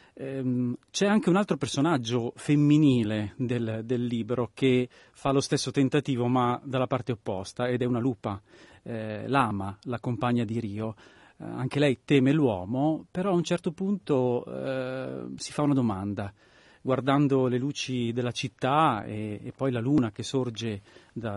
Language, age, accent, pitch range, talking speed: Italian, 40-59, native, 110-135 Hz, 155 wpm